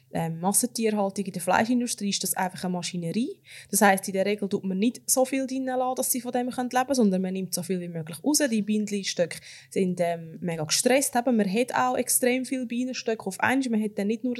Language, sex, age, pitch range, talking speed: German, female, 20-39, 185-240 Hz, 230 wpm